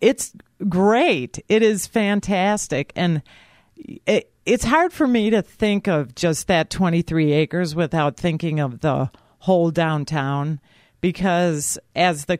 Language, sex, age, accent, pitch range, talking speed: English, female, 50-69, American, 150-185 Hz, 130 wpm